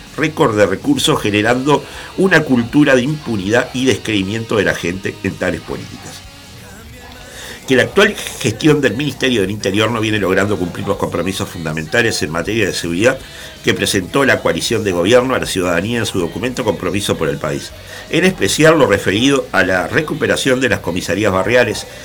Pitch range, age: 100-130 Hz, 50-69